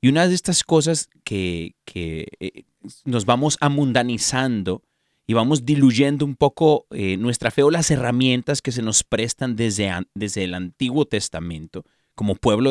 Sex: male